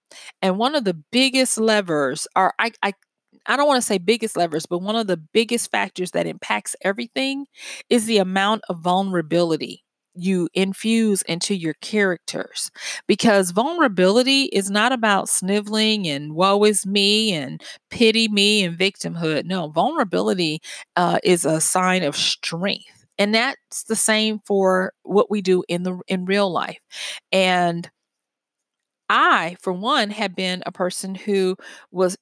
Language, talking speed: English, 150 wpm